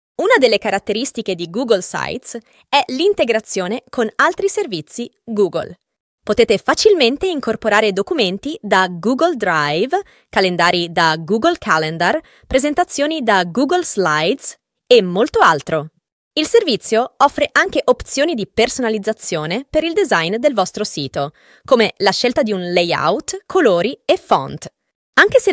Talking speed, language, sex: 125 wpm, Italian, female